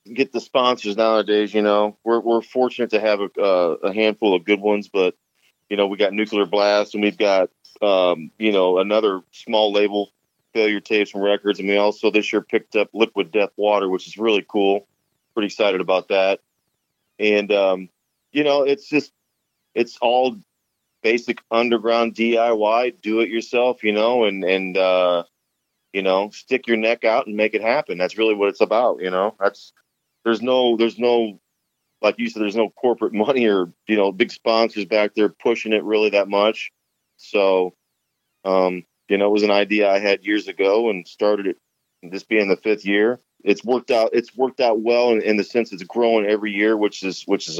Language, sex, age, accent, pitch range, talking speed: English, male, 40-59, American, 95-115 Hz, 195 wpm